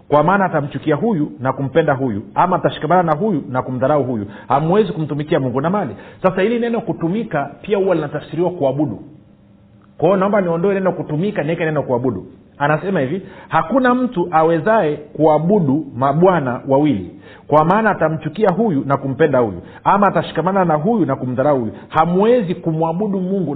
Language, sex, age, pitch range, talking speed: Swahili, male, 50-69, 135-185 Hz, 155 wpm